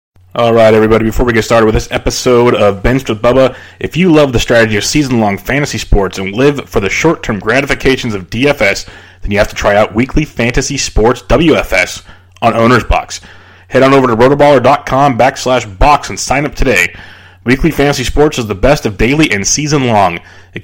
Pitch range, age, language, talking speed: 105-140 Hz, 30-49, English, 190 wpm